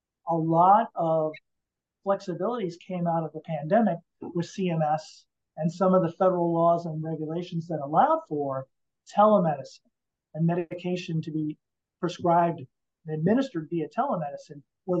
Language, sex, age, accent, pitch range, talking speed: English, male, 40-59, American, 150-180 Hz, 130 wpm